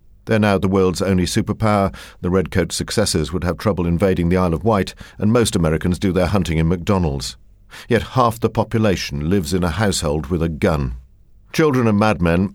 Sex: male